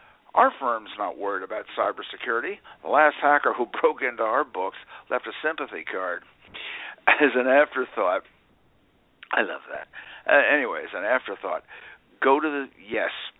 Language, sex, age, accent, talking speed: English, male, 60-79, American, 145 wpm